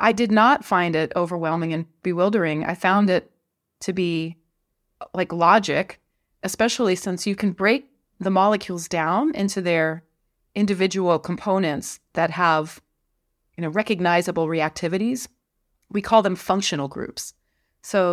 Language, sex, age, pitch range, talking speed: English, female, 30-49, 165-205 Hz, 130 wpm